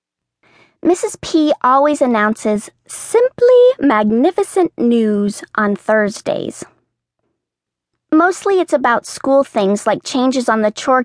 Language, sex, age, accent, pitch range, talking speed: English, female, 40-59, American, 210-275 Hz, 105 wpm